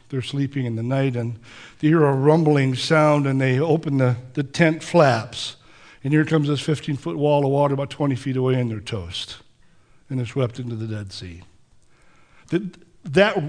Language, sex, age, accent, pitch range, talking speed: English, male, 60-79, American, 125-165 Hz, 180 wpm